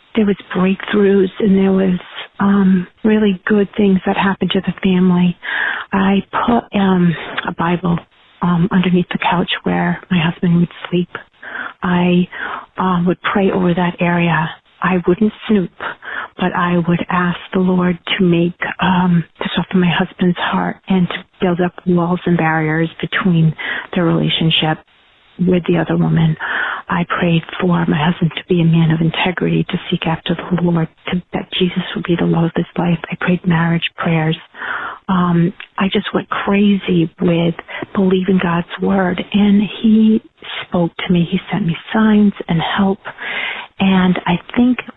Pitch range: 170-195 Hz